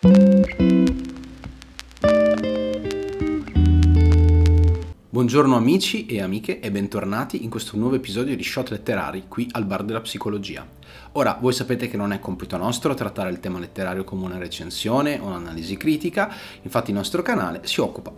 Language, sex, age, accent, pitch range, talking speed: Italian, male, 30-49, native, 90-115 Hz, 135 wpm